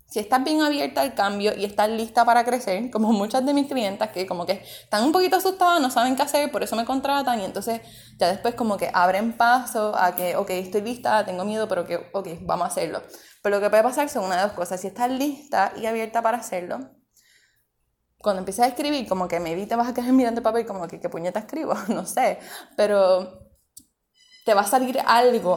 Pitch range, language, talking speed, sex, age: 200-250 Hz, Spanish, 225 wpm, female, 20-39